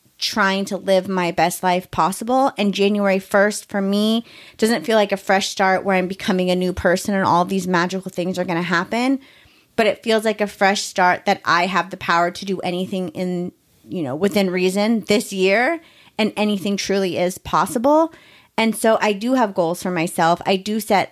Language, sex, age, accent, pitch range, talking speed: English, female, 30-49, American, 180-200 Hz, 200 wpm